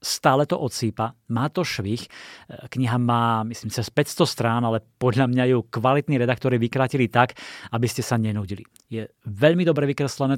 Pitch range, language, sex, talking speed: 110-130 Hz, Slovak, male, 160 wpm